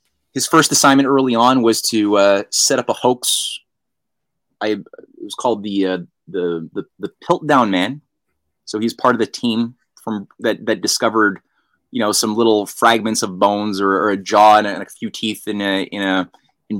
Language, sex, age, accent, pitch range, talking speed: English, male, 20-39, American, 105-140 Hz, 190 wpm